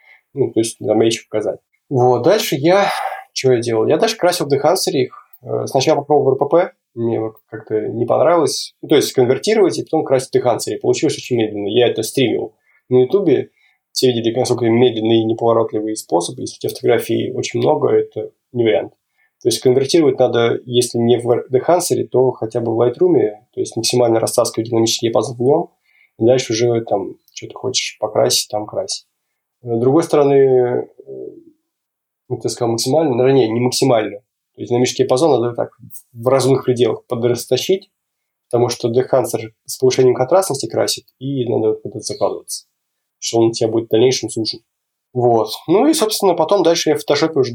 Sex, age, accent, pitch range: male, 20-39, native, 115-175 Hz